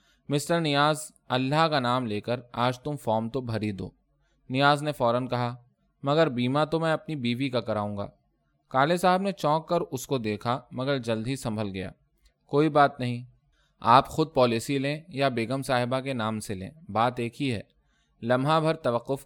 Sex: male